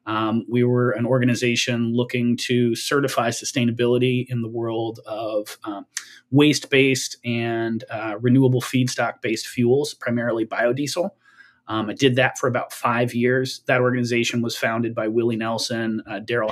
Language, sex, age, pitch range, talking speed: Swedish, male, 30-49, 115-125 Hz, 140 wpm